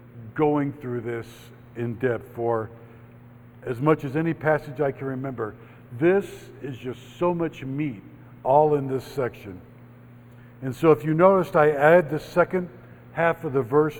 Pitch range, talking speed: 120-160 Hz, 160 wpm